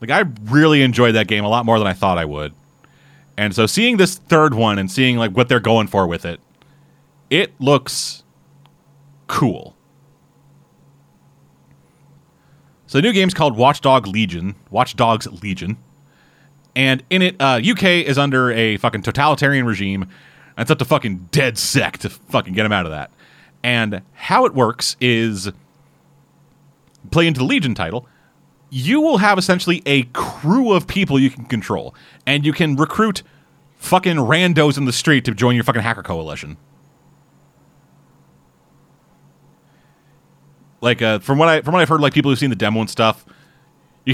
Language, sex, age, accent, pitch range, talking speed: English, male, 30-49, American, 110-155 Hz, 165 wpm